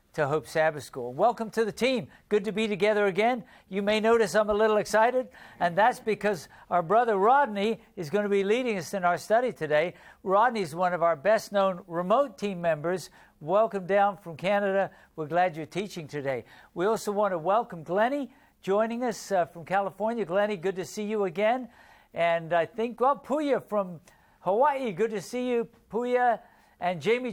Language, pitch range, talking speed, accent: English, 180-230 Hz, 190 wpm, American